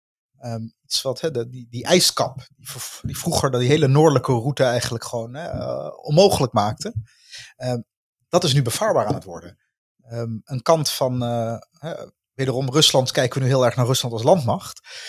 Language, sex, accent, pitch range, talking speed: Dutch, male, Dutch, 120-155 Hz, 180 wpm